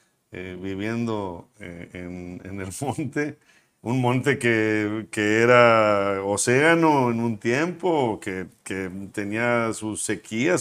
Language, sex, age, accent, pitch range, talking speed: Spanish, male, 50-69, Mexican, 95-120 Hz, 120 wpm